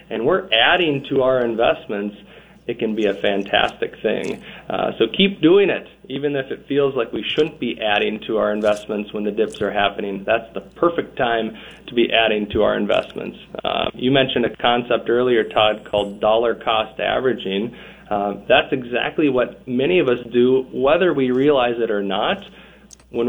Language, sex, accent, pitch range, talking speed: English, male, American, 105-135 Hz, 180 wpm